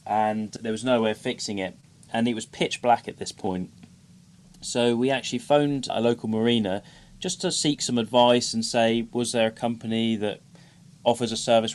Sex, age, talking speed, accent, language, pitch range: male, 20-39, 195 wpm, British, English, 110-125 Hz